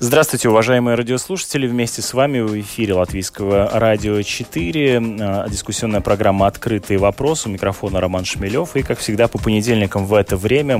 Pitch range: 90-105 Hz